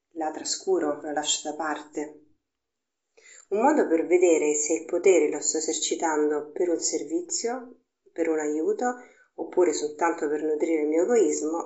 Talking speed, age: 150 wpm, 40-59